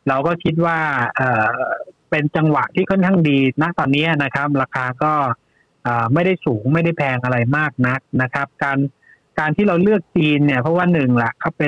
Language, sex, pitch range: Thai, male, 135-165 Hz